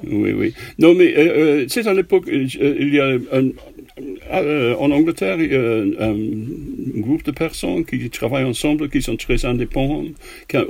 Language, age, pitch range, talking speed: French, 60-79, 120-155 Hz, 185 wpm